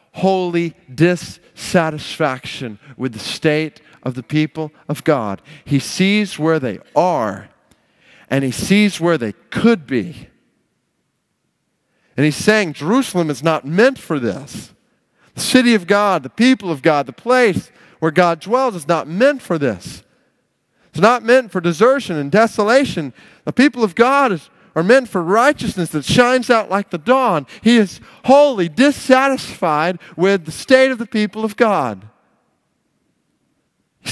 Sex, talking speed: male, 150 wpm